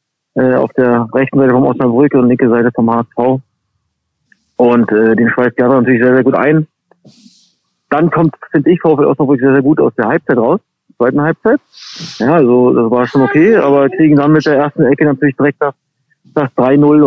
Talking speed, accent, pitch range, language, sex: 190 wpm, German, 125-155 Hz, German, male